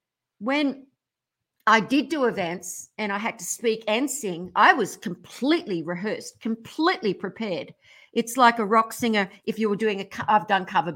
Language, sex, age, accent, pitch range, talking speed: English, female, 50-69, Australian, 210-300 Hz, 180 wpm